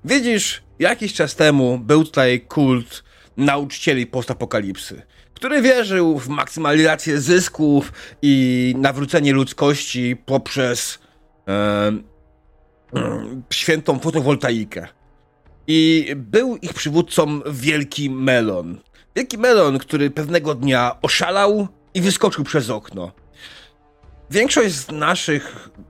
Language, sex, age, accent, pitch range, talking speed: Polish, male, 30-49, native, 120-165 Hz, 95 wpm